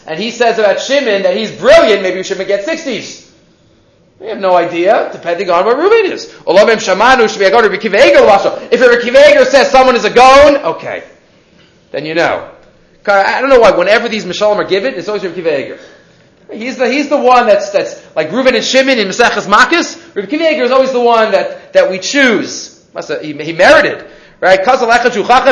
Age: 30-49